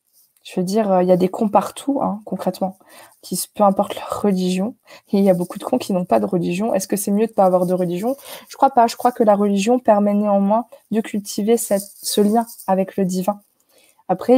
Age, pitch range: 20-39, 185-225 Hz